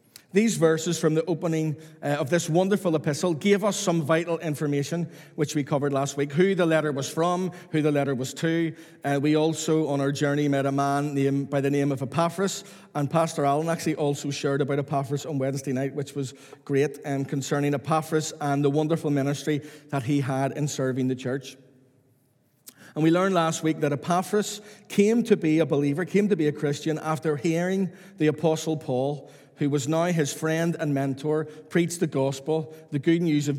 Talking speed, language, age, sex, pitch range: 190 wpm, English, 40-59, male, 140-175 Hz